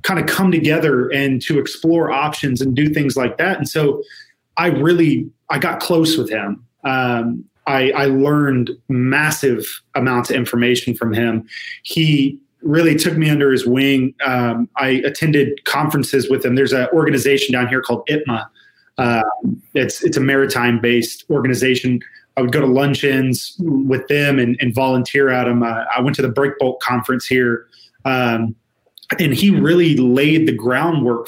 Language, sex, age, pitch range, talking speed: English, male, 20-39, 125-150 Hz, 170 wpm